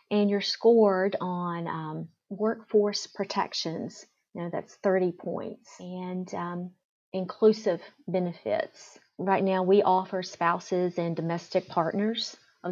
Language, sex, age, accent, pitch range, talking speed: English, female, 40-59, American, 175-205 Hz, 120 wpm